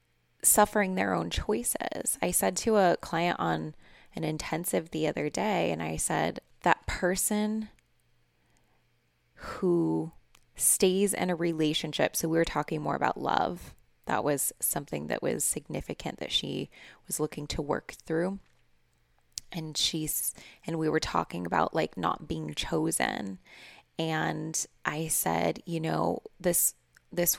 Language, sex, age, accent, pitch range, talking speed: English, female, 20-39, American, 120-180 Hz, 140 wpm